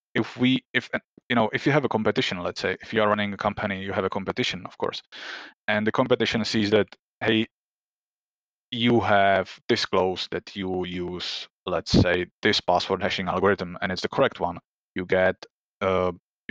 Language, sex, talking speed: English, male, 180 wpm